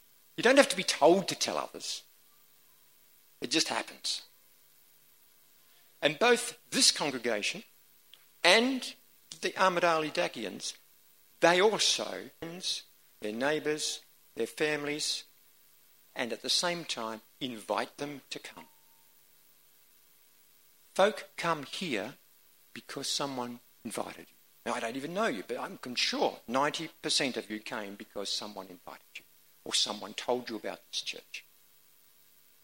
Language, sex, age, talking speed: English, male, 50-69, 120 wpm